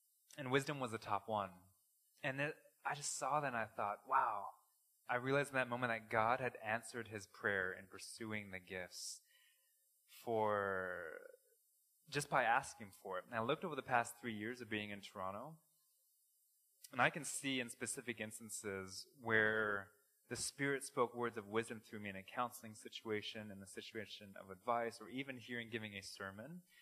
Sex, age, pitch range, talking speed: male, 20-39, 105-130 Hz, 180 wpm